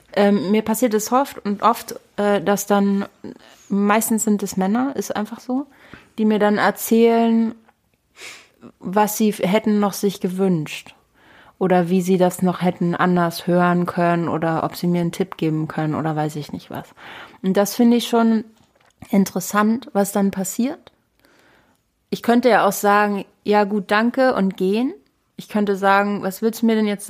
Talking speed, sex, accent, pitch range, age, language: 170 wpm, female, German, 180-210 Hz, 30-49, German